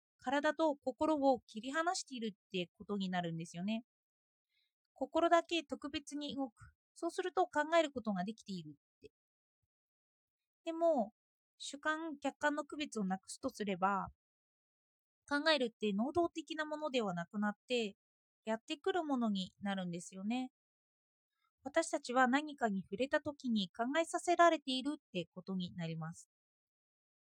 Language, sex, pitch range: Japanese, female, 225-320 Hz